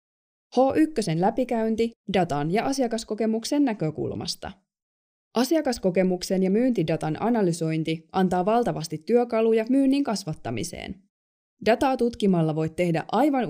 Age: 20-39